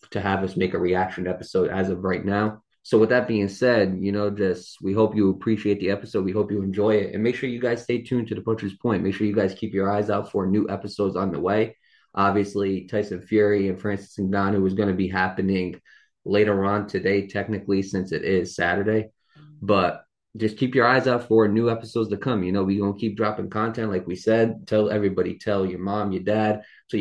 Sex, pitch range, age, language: male, 100-115 Hz, 20-39, English